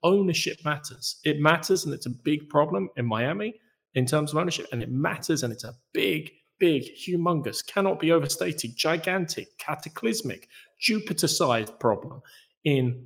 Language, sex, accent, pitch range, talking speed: English, male, British, 115-150 Hz, 145 wpm